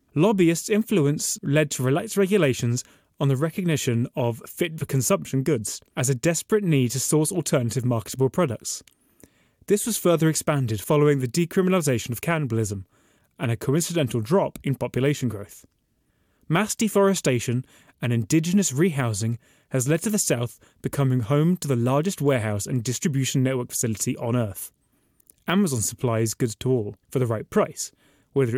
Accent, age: British, 20-39